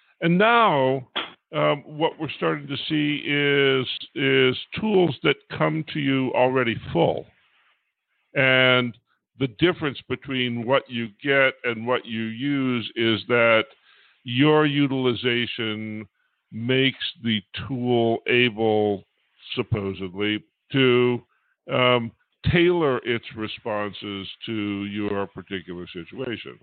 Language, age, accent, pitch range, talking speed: English, 50-69, American, 105-135 Hz, 105 wpm